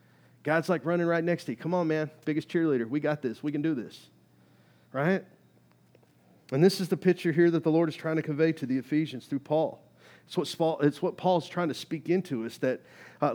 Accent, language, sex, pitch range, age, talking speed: American, English, male, 130-175 Hz, 40-59, 220 wpm